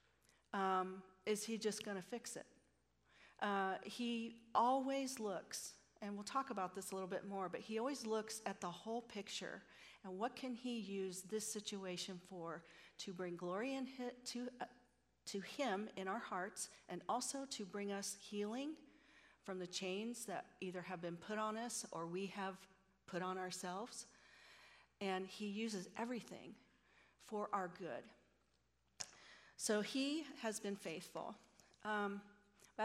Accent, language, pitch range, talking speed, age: American, English, 185-220 Hz, 150 wpm, 40-59